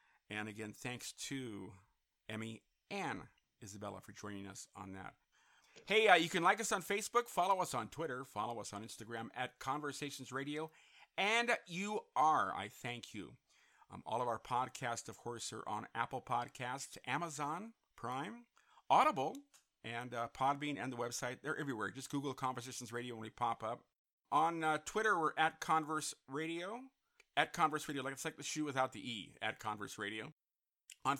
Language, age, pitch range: English, 50-69, 115-160 Hz